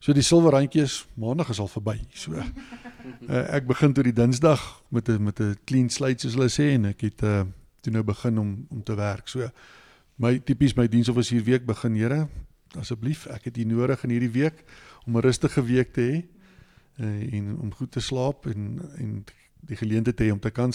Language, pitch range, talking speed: English, 110-135 Hz, 195 wpm